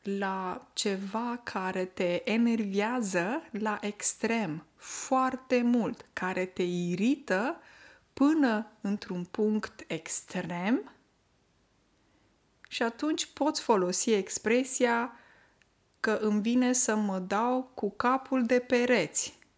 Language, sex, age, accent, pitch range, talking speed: Romanian, female, 20-39, native, 185-245 Hz, 95 wpm